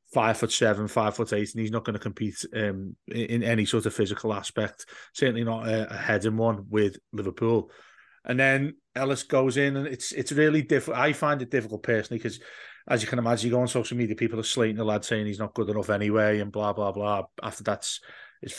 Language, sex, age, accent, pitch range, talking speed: English, male, 30-49, British, 110-140 Hz, 230 wpm